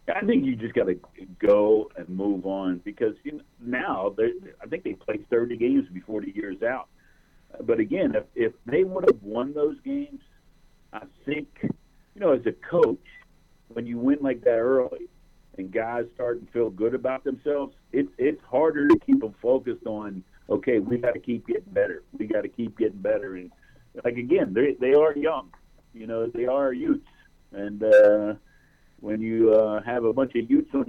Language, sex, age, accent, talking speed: English, male, 50-69, American, 185 wpm